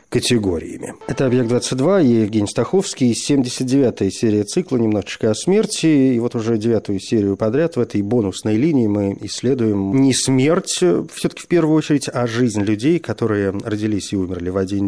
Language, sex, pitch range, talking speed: Russian, male, 105-155 Hz, 155 wpm